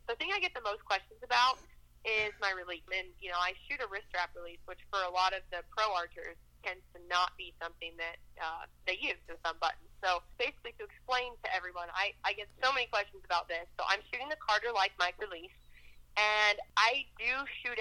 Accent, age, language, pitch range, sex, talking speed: American, 30-49, English, 180-230 Hz, female, 220 wpm